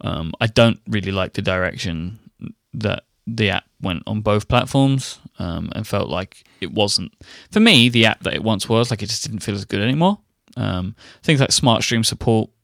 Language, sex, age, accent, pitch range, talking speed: English, male, 20-39, British, 100-125 Hz, 200 wpm